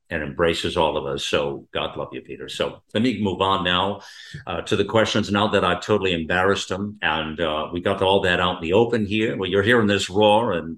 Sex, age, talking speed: male, 50-69, 240 wpm